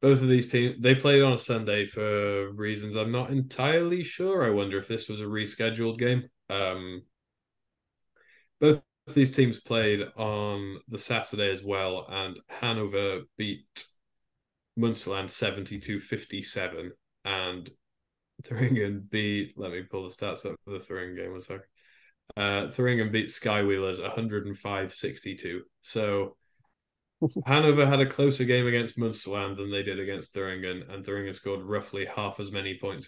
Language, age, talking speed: English, 20-39, 140 wpm